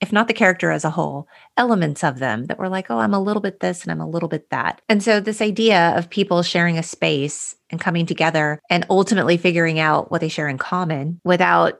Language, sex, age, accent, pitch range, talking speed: English, female, 30-49, American, 155-190 Hz, 240 wpm